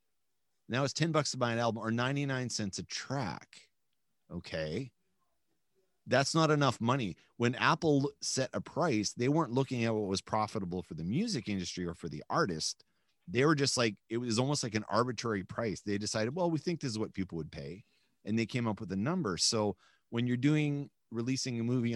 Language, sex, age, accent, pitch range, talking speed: English, male, 30-49, American, 100-130 Hz, 200 wpm